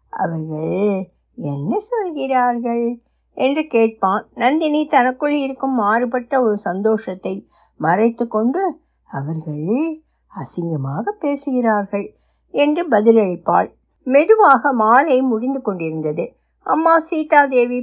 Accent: native